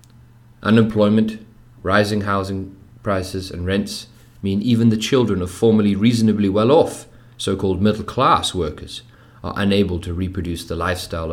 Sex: male